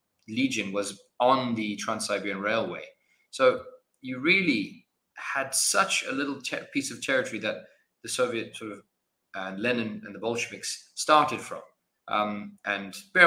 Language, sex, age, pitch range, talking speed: English, male, 20-39, 100-125 Hz, 130 wpm